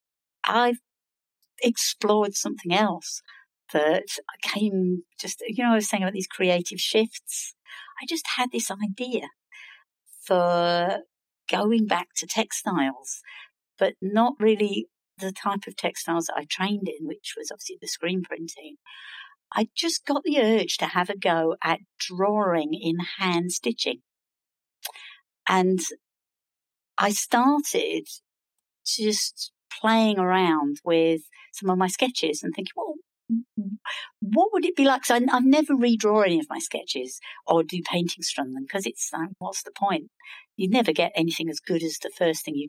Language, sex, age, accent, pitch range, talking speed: English, female, 60-79, British, 180-250 Hz, 150 wpm